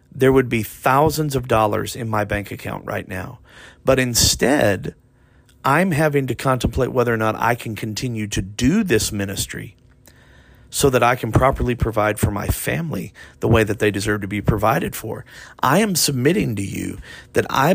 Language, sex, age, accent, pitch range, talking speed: English, male, 40-59, American, 110-150 Hz, 180 wpm